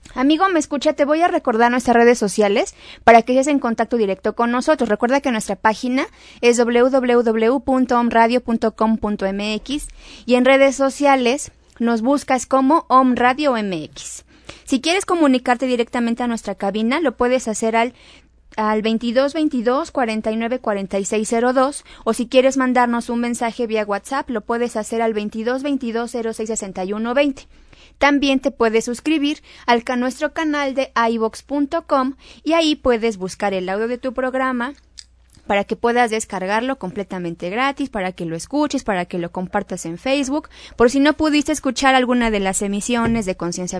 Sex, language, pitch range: female, Spanish, 210-265 Hz